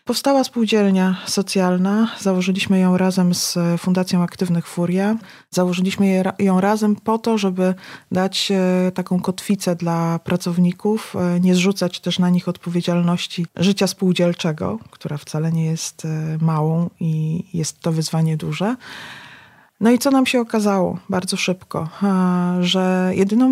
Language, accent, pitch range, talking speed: Polish, native, 180-205 Hz, 125 wpm